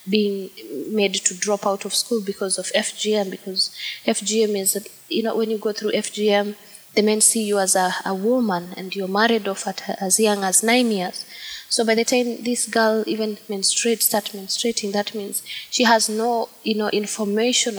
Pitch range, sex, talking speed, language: 190-220 Hz, female, 190 wpm, Dutch